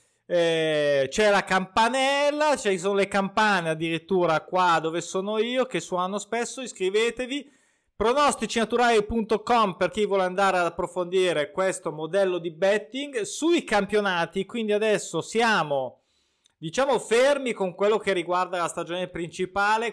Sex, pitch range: male, 175-230 Hz